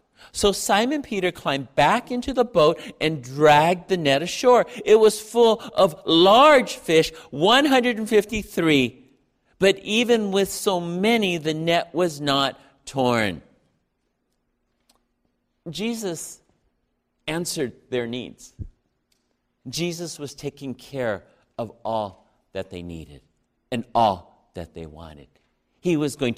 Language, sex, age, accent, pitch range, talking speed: English, male, 50-69, American, 145-210 Hz, 115 wpm